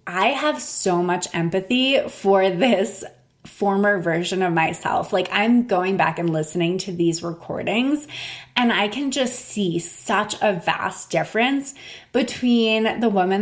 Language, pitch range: English, 175-225 Hz